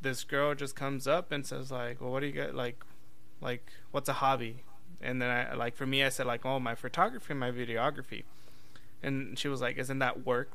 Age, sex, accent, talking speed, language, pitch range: 20-39, male, American, 220 wpm, English, 120-135 Hz